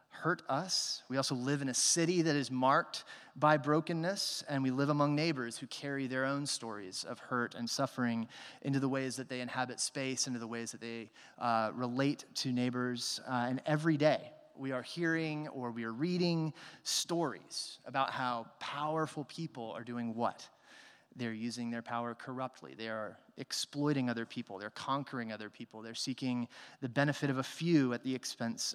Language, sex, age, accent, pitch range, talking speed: English, male, 30-49, American, 120-140 Hz, 180 wpm